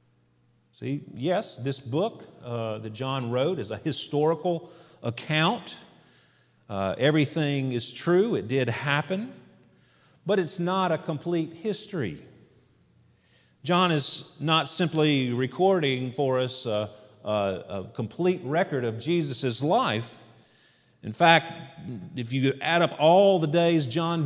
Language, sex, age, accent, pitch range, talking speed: English, male, 40-59, American, 115-170 Hz, 125 wpm